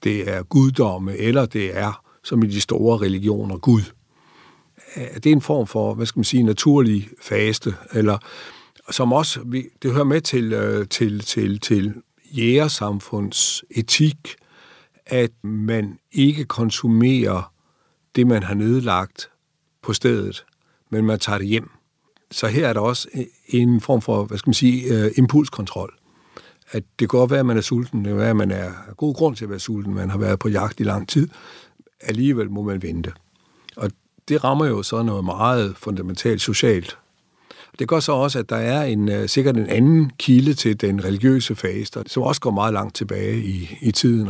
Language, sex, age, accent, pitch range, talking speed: Danish, male, 60-79, native, 105-130 Hz, 175 wpm